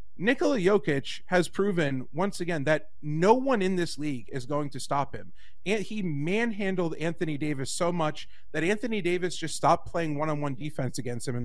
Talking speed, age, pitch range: 185 wpm, 30-49, 140-180 Hz